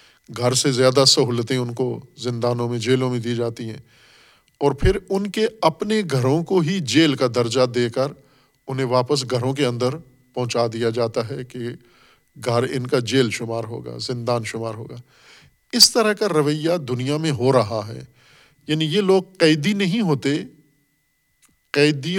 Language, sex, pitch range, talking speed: Urdu, male, 120-145 Hz, 165 wpm